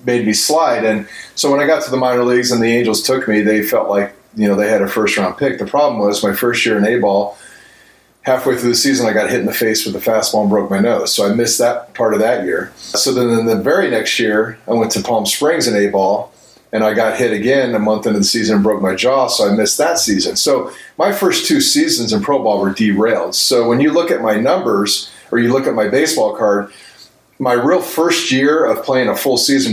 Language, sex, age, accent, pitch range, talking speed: English, male, 30-49, American, 110-130 Hz, 260 wpm